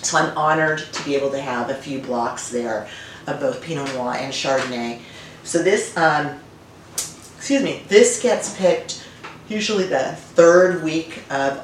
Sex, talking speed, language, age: female, 160 wpm, English, 40-59